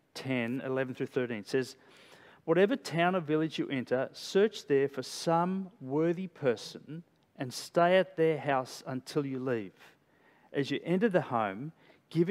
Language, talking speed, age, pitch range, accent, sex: English, 150 wpm, 40-59, 140-190 Hz, Australian, male